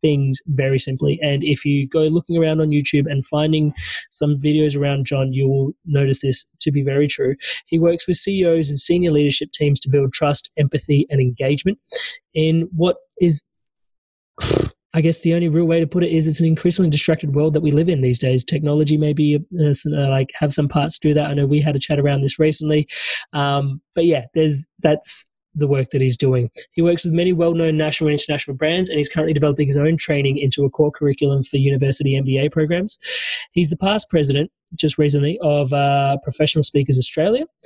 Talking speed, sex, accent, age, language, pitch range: 200 wpm, male, Australian, 20-39, English, 140-165 Hz